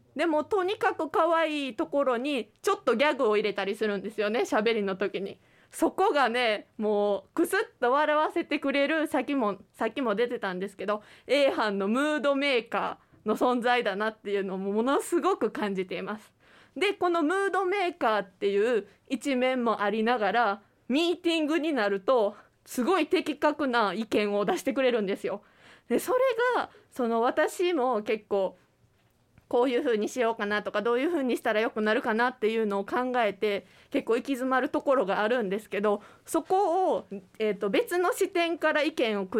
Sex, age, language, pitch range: female, 20-39, Japanese, 205-305 Hz